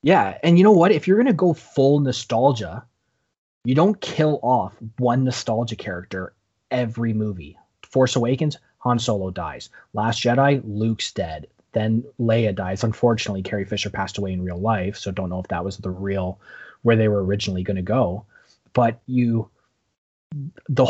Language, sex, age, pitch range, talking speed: English, male, 30-49, 110-130 Hz, 165 wpm